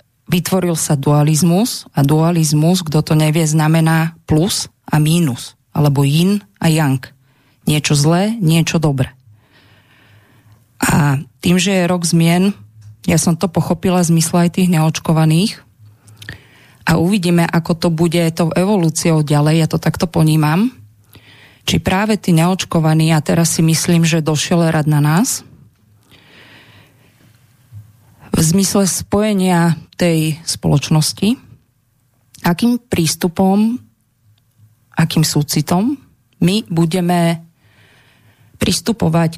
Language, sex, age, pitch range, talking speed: Slovak, female, 20-39, 135-175 Hz, 110 wpm